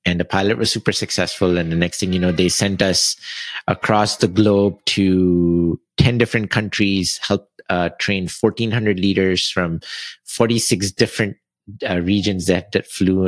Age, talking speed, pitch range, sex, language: 50-69, 160 wpm, 85-100 Hz, male, English